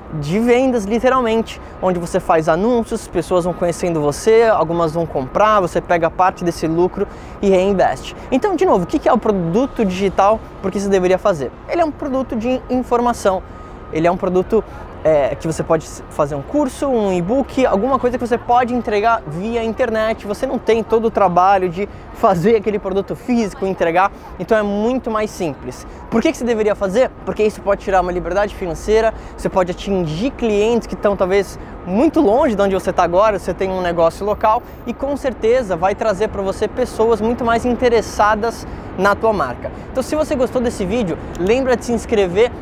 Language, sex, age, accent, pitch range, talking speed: Portuguese, male, 20-39, Brazilian, 185-240 Hz, 190 wpm